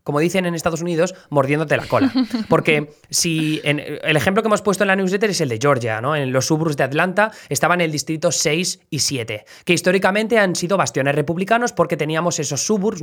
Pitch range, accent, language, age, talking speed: 135-180 Hz, Spanish, Spanish, 20-39, 205 wpm